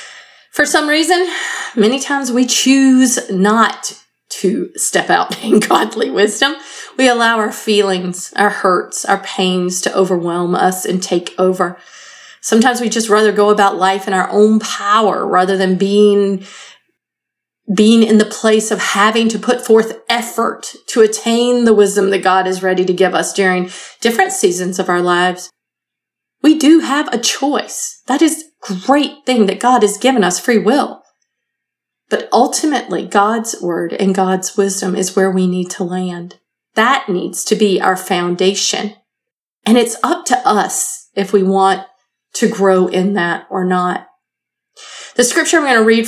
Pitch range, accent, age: 190-250 Hz, American, 30-49